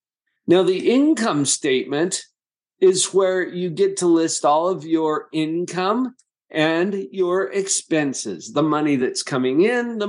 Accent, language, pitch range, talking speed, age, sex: American, English, 135-195 Hz, 135 wpm, 50-69, male